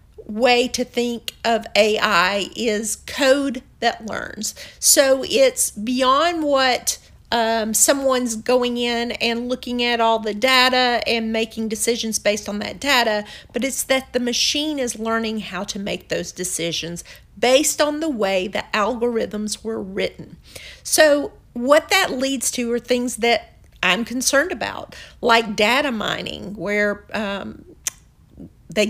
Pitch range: 210-250 Hz